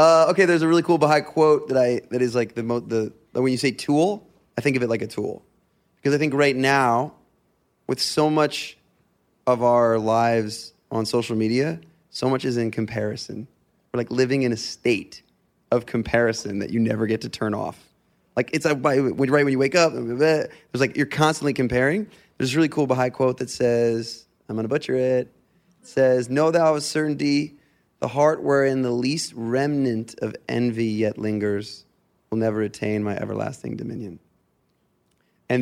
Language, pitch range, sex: English, 115-145 Hz, male